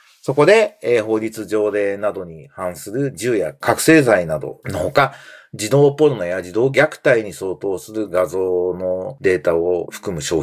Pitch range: 110-170 Hz